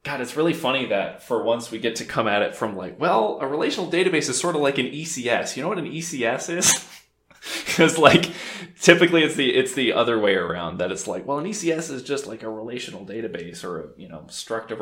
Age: 20-39